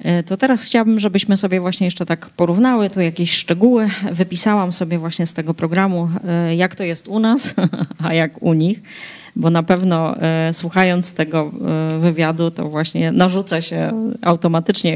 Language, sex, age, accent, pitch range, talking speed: Polish, female, 30-49, native, 160-185 Hz, 150 wpm